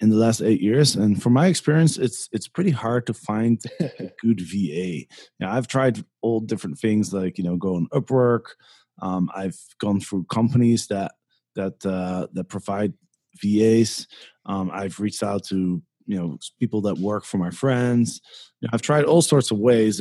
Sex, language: male, English